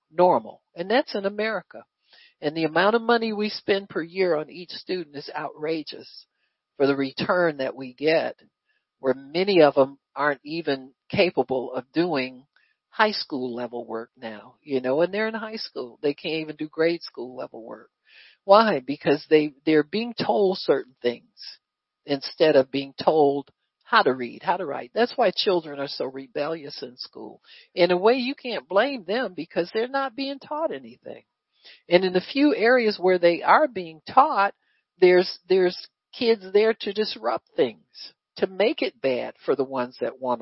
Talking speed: 175 wpm